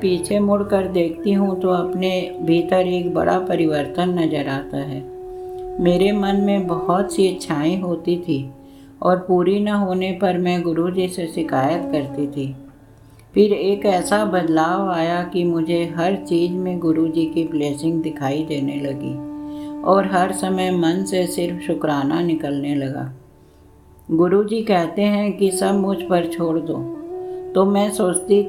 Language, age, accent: Hindi, 50-69, native